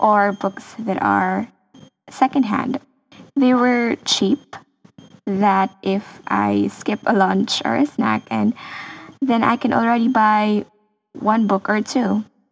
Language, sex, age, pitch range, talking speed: English, female, 10-29, 195-265 Hz, 125 wpm